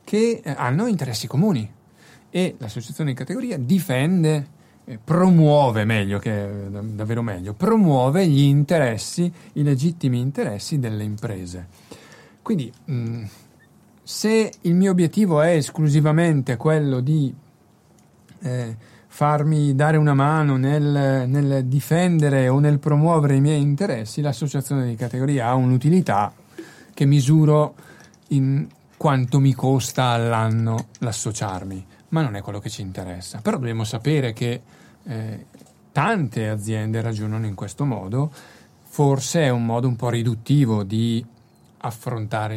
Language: Italian